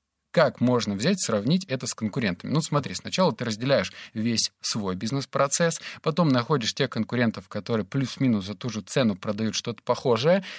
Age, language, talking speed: 20-39, Russian, 160 wpm